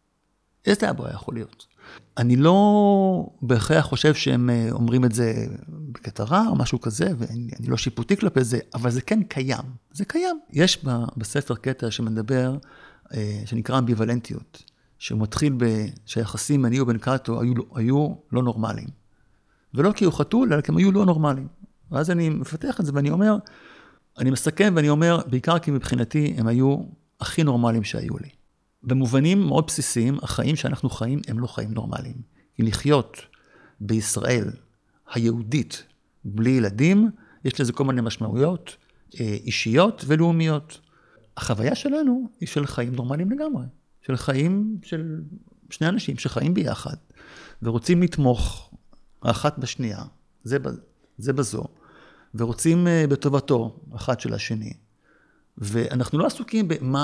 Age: 50-69